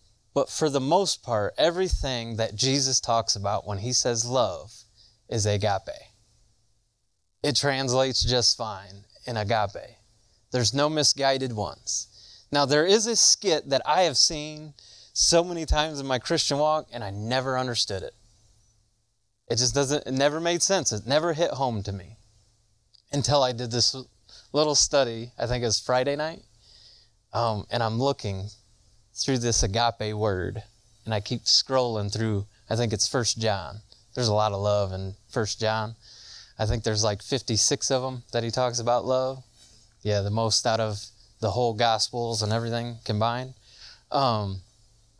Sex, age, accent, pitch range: male, 20-39, American, 110-130 Hz